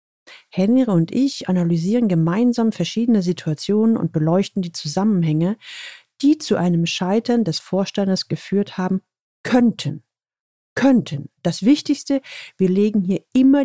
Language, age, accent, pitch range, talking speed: German, 40-59, German, 175-235 Hz, 120 wpm